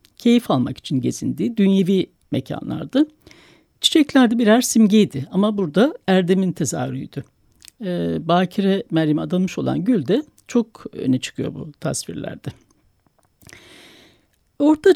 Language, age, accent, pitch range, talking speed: Turkish, 60-79, native, 165-240 Hz, 100 wpm